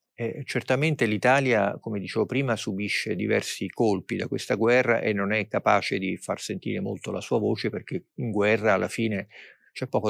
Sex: male